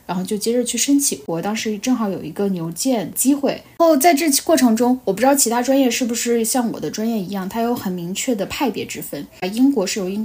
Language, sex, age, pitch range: Chinese, female, 10-29, 195-240 Hz